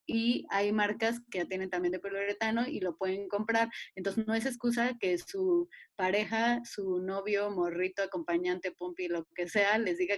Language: Spanish